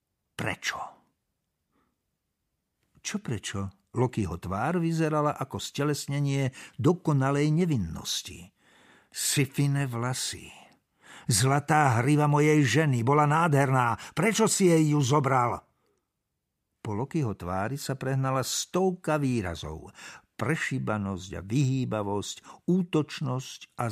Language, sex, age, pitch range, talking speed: Slovak, male, 60-79, 105-150 Hz, 90 wpm